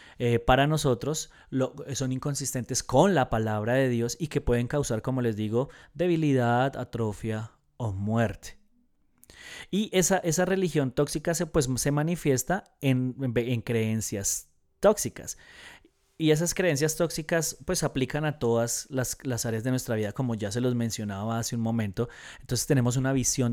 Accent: Colombian